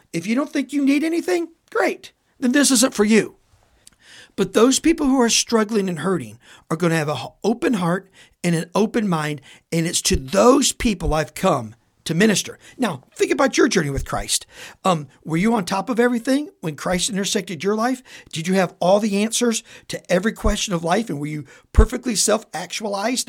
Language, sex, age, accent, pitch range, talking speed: English, male, 50-69, American, 170-265 Hz, 195 wpm